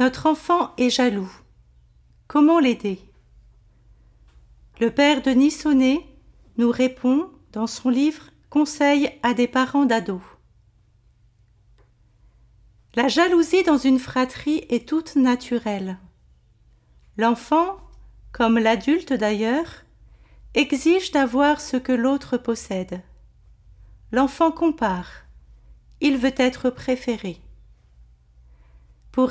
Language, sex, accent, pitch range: French, female, French, 205-285 Hz